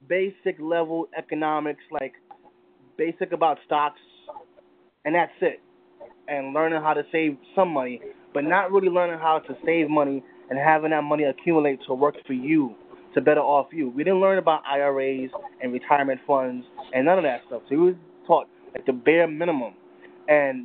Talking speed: 175 wpm